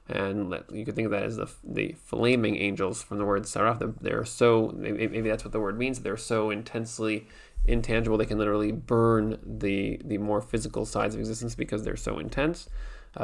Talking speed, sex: 205 wpm, male